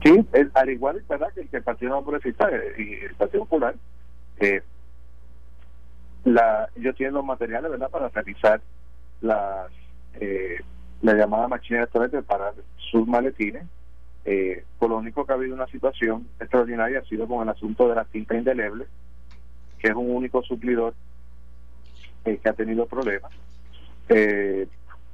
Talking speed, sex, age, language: 145 wpm, male, 40-59, Spanish